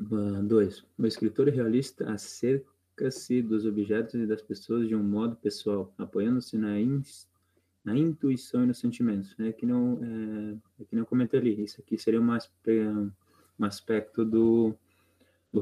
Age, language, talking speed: 20-39, Portuguese, 150 wpm